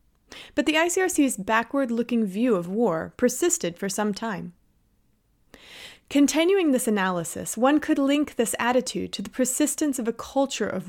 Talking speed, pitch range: 145 wpm, 195-260 Hz